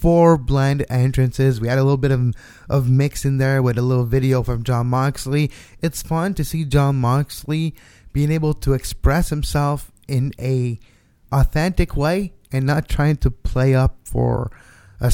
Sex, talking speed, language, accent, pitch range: male, 170 wpm, English, American, 125-155 Hz